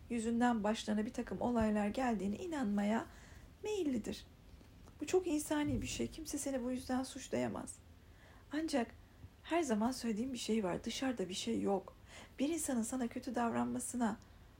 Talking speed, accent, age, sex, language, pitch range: 140 wpm, native, 50-69, female, Turkish, 210-270 Hz